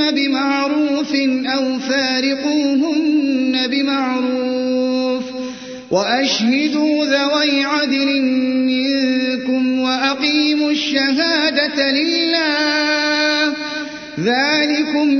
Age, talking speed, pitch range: 30-49, 45 wpm, 255-300 Hz